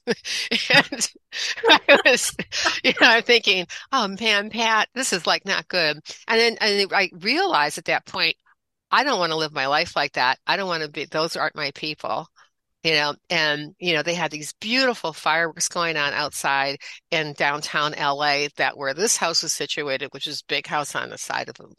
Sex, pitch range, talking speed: female, 150-180 Hz, 200 wpm